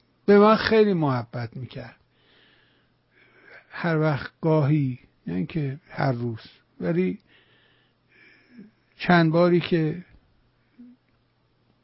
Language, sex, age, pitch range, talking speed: English, male, 60-79, 140-175 Hz, 80 wpm